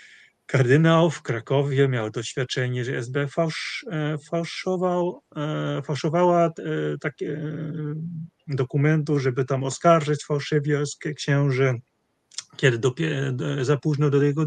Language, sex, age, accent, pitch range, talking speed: Polish, male, 30-49, native, 130-170 Hz, 90 wpm